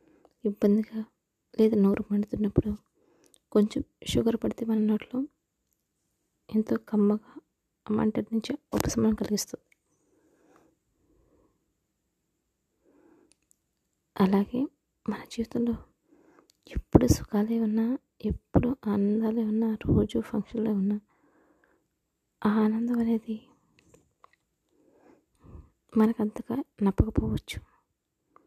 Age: 20-39